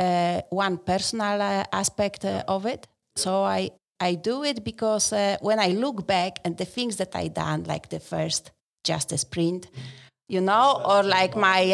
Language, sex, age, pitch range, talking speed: English, female, 30-49, 180-225 Hz, 185 wpm